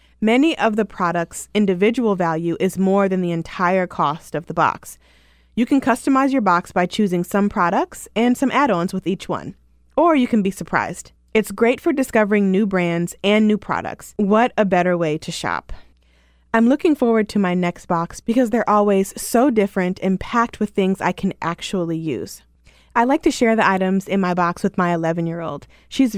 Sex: female